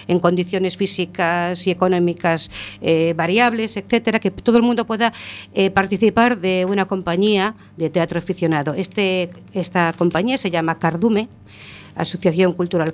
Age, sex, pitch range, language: 50-69, female, 160-195 Hz, Spanish